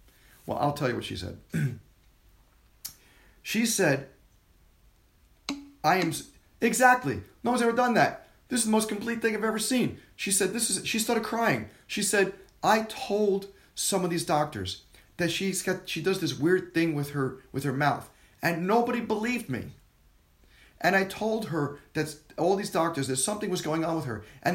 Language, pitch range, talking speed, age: English, 115-195 Hz, 180 wpm, 40-59